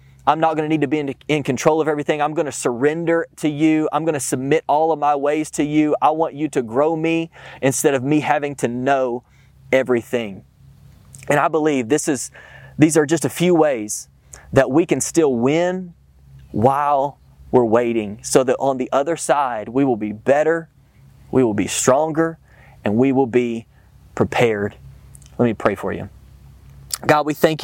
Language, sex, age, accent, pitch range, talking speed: English, male, 30-49, American, 120-150 Hz, 185 wpm